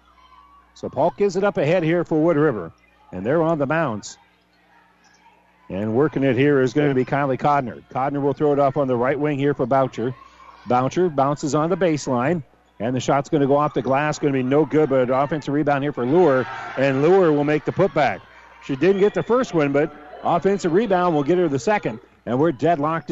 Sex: male